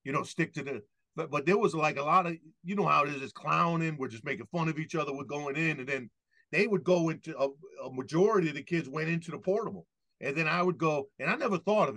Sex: male